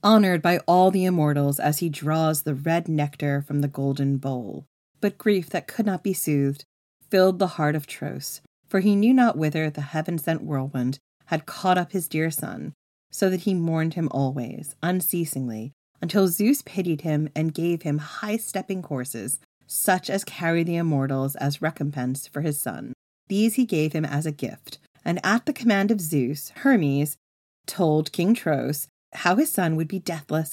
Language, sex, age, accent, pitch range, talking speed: English, female, 30-49, American, 145-195 Hz, 175 wpm